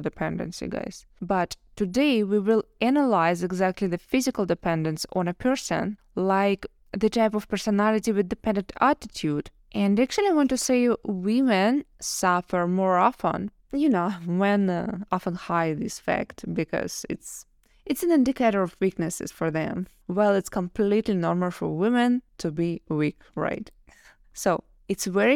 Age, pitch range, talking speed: 20-39, 180-225 Hz, 145 wpm